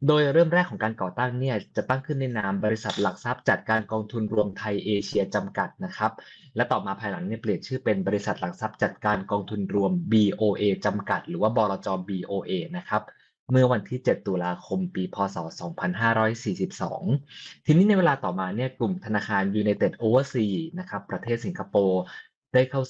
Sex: male